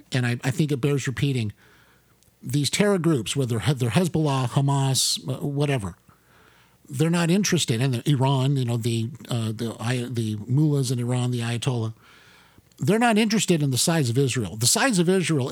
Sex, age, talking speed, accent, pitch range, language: male, 50-69, 170 wpm, American, 130-175 Hz, English